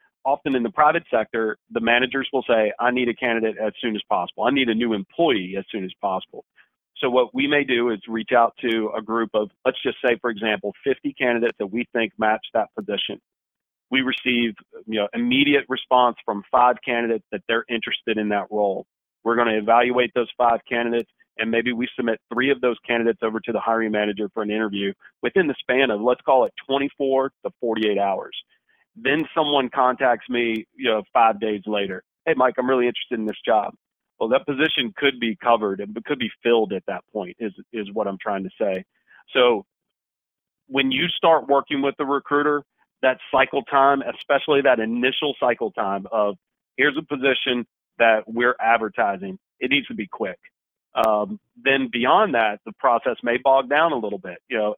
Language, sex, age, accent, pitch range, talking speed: English, male, 40-59, American, 110-135 Hz, 195 wpm